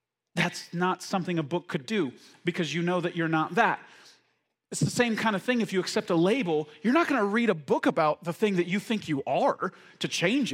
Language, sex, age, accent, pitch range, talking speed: English, male, 40-59, American, 165-225 Hz, 240 wpm